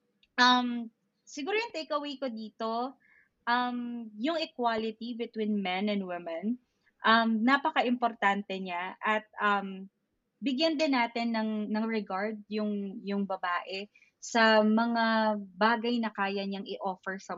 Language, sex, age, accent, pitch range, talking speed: Filipino, female, 20-39, native, 200-245 Hz, 120 wpm